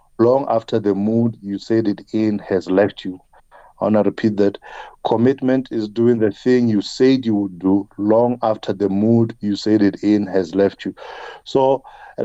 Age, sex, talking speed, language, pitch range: 50-69, male, 190 wpm, English, 105-120 Hz